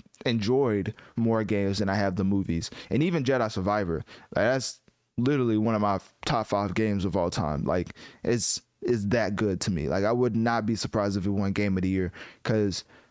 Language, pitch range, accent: English, 100-125 Hz, American